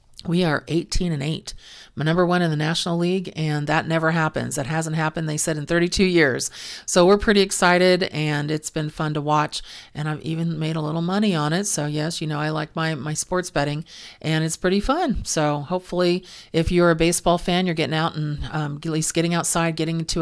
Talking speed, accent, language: 225 wpm, American, English